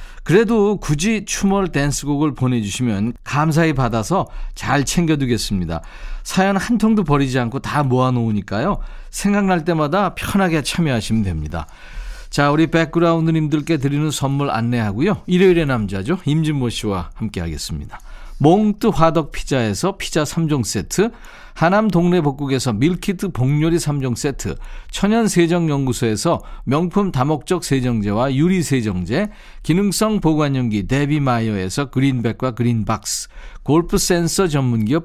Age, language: 40-59, Korean